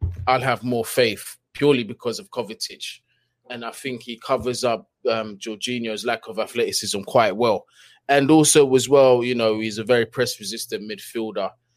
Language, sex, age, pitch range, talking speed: English, male, 20-39, 115-135 Hz, 165 wpm